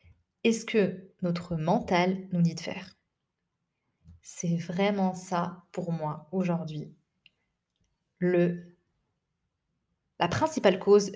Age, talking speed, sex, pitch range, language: 20-39, 95 wpm, female, 175-225 Hz, French